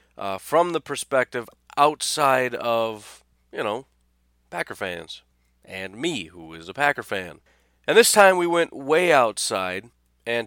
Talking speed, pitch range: 145 wpm, 100-135 Hz